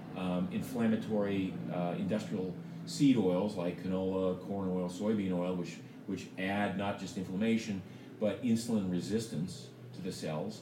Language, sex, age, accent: English, male, 40-59, American